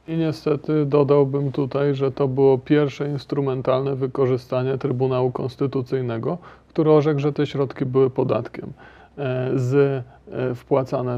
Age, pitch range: 40-59, 120-140 Hz